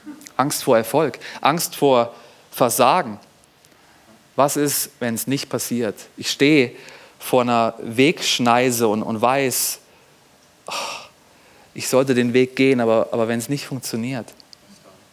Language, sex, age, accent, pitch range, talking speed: German, male, 30-49, German, 115-155 Hz, 120 wpm